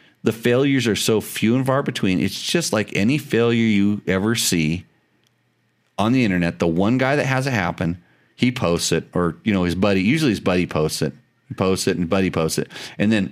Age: 40-59